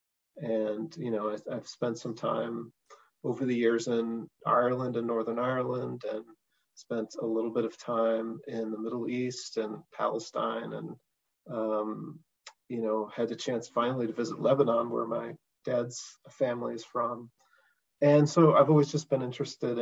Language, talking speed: English, 155 wpm